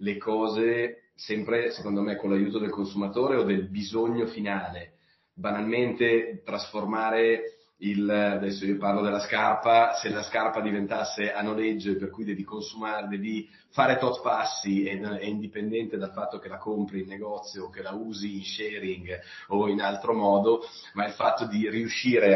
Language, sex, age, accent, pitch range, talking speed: Italian, male, 40-59, native, 95-110 Hz, 160 wpm